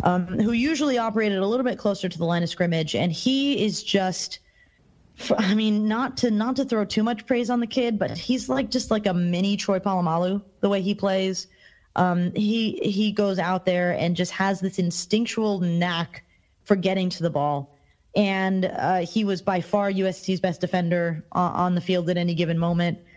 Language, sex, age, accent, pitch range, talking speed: English, female, 20-39, American, 175-205 Hz, 195 wpm